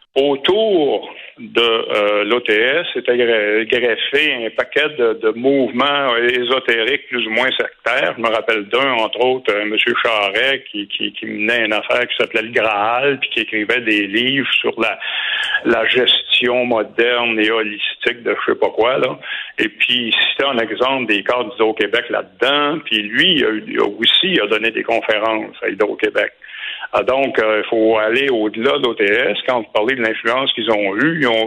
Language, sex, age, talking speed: French, male, 60-79, 185 wpm